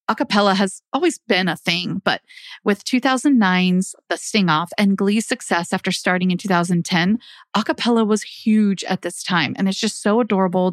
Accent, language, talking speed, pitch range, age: American, English, 170 wpm, 185-230 Hz, 30-49